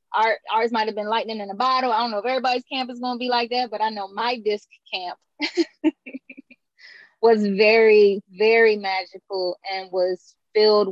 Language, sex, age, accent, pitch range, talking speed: English, female, 10-29, American, 195-235 Hz, 180 wpm